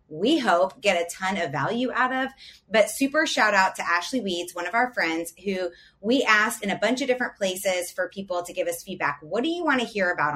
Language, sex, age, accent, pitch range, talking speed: English, female, 30-49, American, 180-265 Hz, 245 wpm